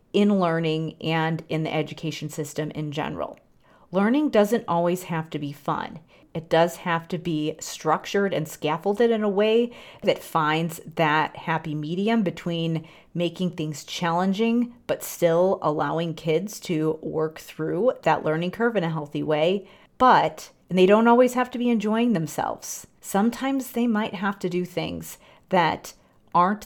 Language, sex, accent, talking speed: English, female, American, 155 wpm